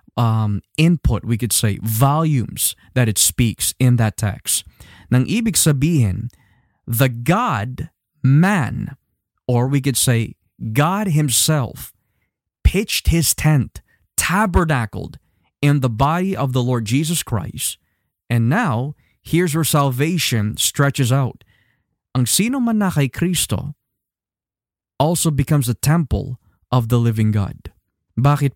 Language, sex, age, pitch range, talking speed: Filipino, male, 20-39, 115-160 Hz, 120 wpm